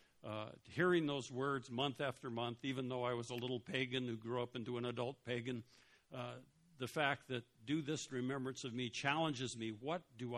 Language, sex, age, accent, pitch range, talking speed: English, male, 60-79, American, 110-135 Hz, 195 wpm